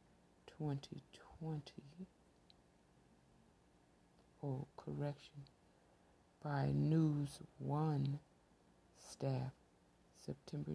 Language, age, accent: English, 60-79, American